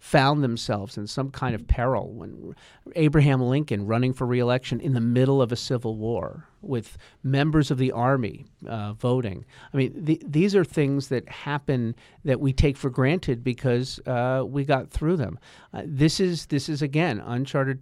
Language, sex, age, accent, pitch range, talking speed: English, male, 50-69, American, 125-155 Hz, 180 wpm